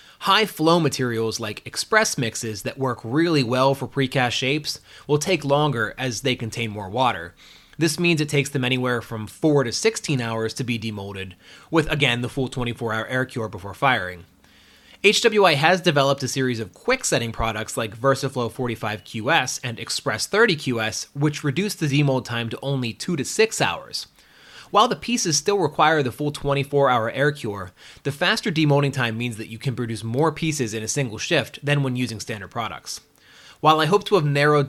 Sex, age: male, 20-39